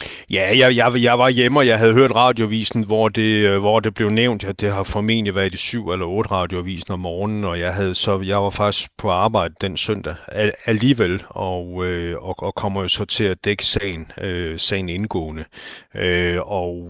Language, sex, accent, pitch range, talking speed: Danish, male, native, 90-110 Hz, 205 wpm